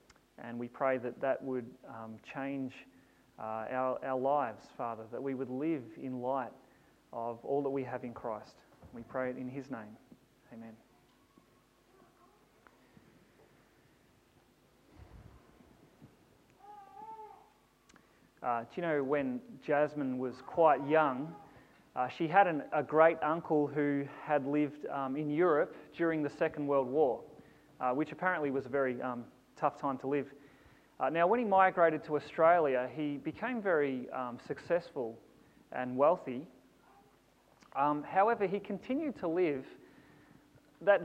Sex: male